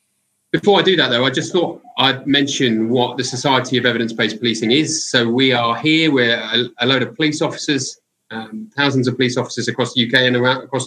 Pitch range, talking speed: 115-135 Hz, 220 wpm